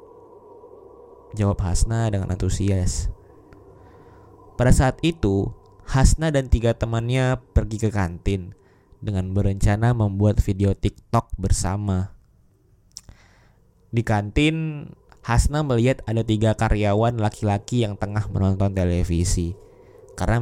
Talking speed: 95 wpm